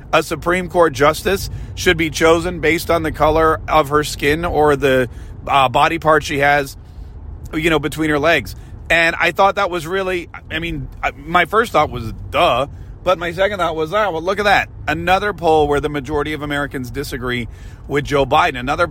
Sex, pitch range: male, 125-165 Hz